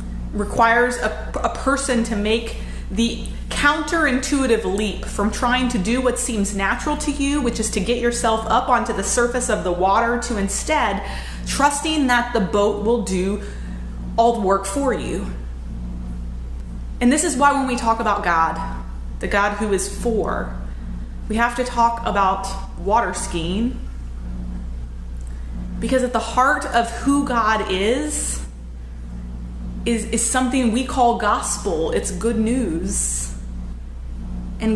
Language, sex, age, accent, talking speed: English, female, 30-49, American, 140 wpm